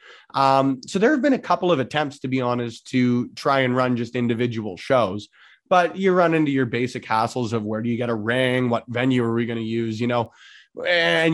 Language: English